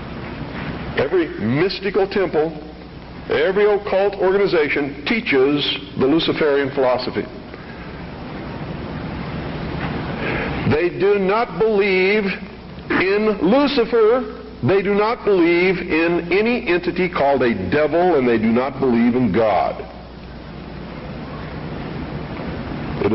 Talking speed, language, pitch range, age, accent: 90 wpm, English, 130-195 Hz, 60-79, American